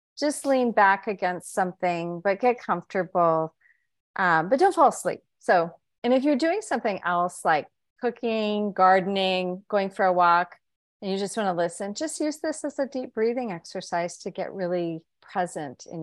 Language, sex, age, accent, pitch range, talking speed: English, female, 40-59, American, 180-225 Hz, 170 wpm